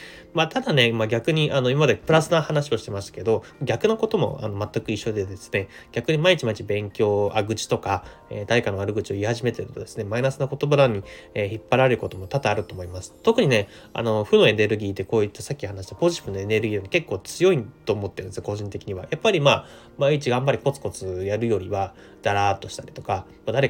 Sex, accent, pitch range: male, native, 100-130 Hz